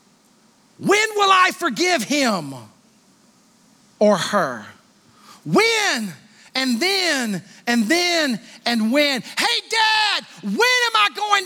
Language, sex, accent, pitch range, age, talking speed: English, male, American, 210-260 Hz, 40-59, 105 wpm